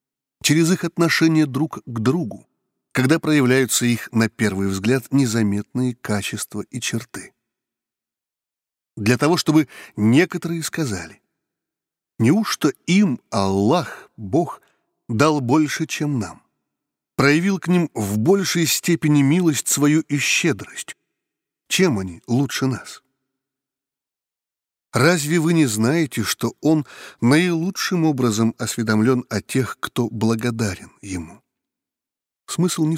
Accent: native